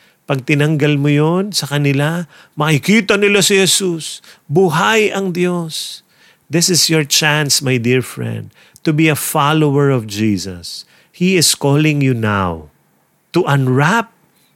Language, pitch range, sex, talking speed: English, 120-155 Hz, male, 135 wpm